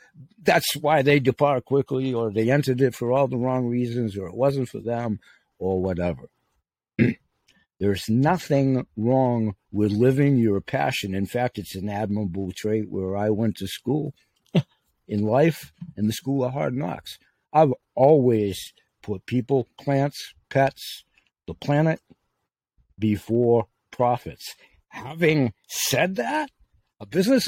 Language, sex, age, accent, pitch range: Chinese, male, 60-79, American, 105-150 Hz